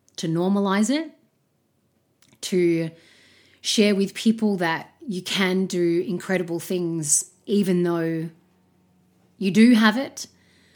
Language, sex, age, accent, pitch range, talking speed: English, female, 30-49, Australian, 155-215 Hz, 105 wpm